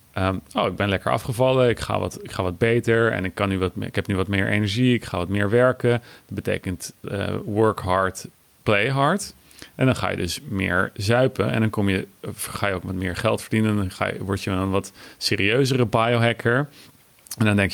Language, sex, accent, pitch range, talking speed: Dutch, male, Dutch, 95-120 Hz, 225 wpm